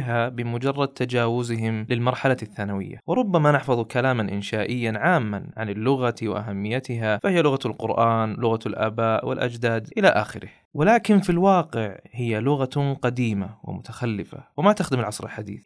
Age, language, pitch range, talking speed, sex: 20-39, Arabic, 115-165 Hz, 120 wpm, male